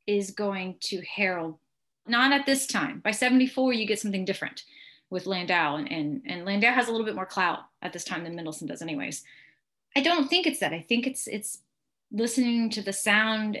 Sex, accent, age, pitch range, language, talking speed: female, American, 30-49, 185-255 Hz, English, 205 wpm